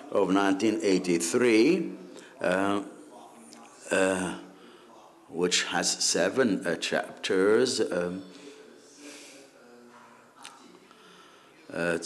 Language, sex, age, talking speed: English, male, 60-79, 55 wpm